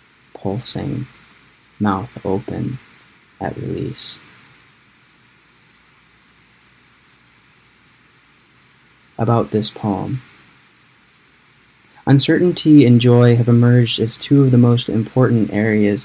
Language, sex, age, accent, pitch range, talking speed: English, male, 20-39, American, 105-120 Hz, 75 wpm